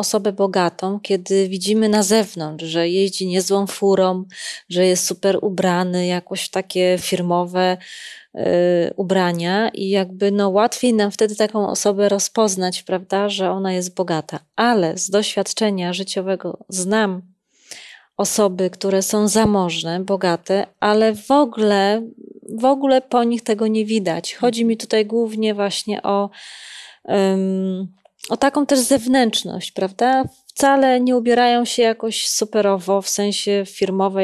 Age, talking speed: 20-39, 130 wpm